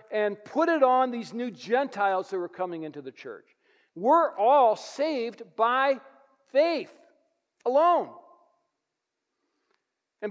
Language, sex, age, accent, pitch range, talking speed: English, male, 50-69, American, 185-290 Hz, 115 wpm